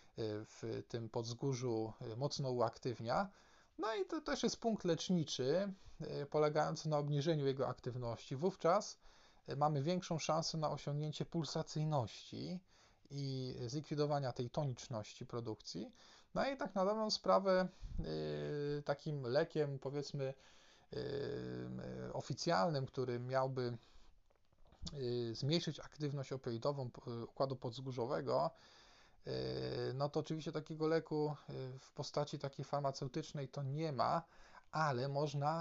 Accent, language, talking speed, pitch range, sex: native, Polish, 100 wpm, 120-155 Hz, male